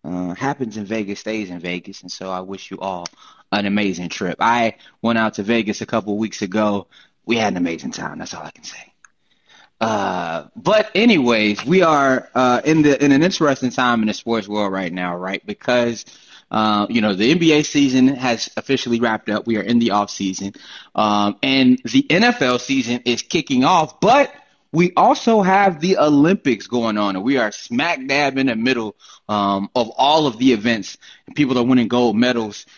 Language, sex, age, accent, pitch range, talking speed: English, male, 20-39, American, 105-145 Hz, 195 wpm